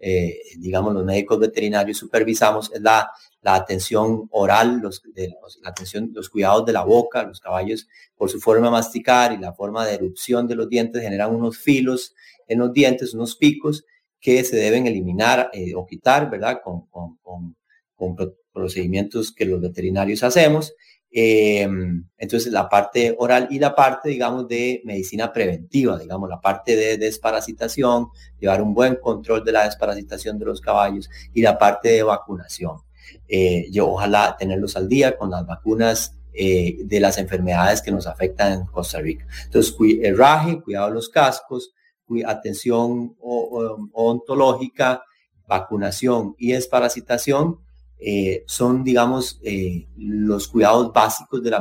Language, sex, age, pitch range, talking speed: English, male, 30-49, 95-120 Hz, 150 wpm